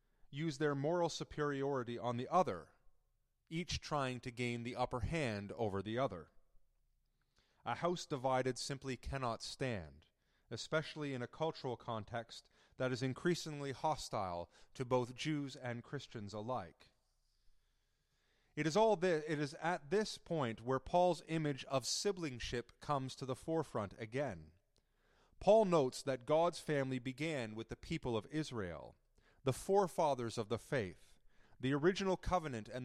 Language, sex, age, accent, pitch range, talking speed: English, male, 30-49, American, 120-155 Hz, 140 wpm